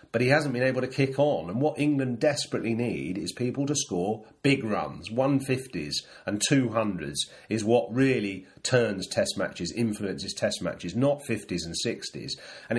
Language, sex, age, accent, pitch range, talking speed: English, male, 40-59, British, 105-130 Hz, 170 wpm